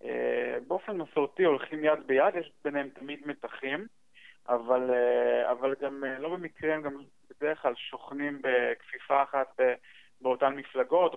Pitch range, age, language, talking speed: 130-155 Hz, 20-39, Hebrew, 125 wpm